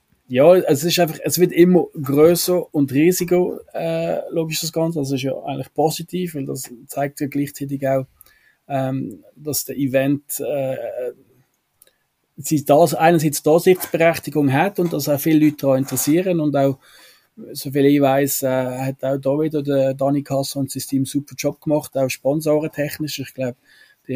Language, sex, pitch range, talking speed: German, male, 135-160 Hz, 170 wpm